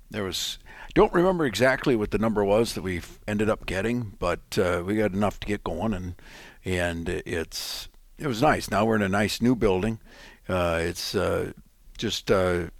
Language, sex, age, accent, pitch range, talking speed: English, male, 50-69, American, 90-110 Hz, 190 wpm